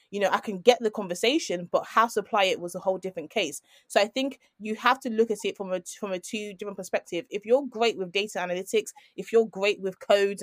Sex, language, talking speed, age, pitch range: female, English, 245 wpm, 20-39, 190-245 Hz